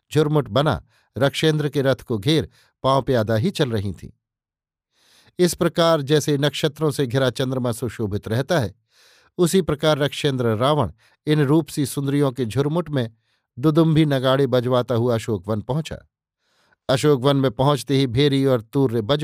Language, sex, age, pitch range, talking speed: Hindi, male, 50-69, 125-150 Hz, 155 wpm